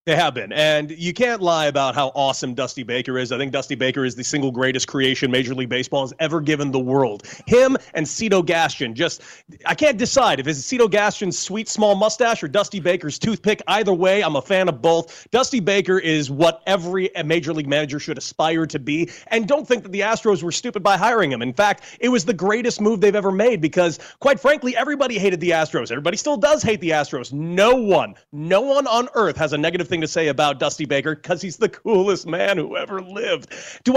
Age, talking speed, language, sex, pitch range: 30-49, 225 wpm, English, male, 150-205 Hz